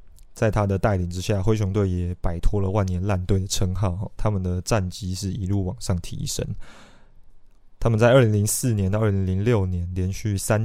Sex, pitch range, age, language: male, 95-115 Hz, 20-39, Chinese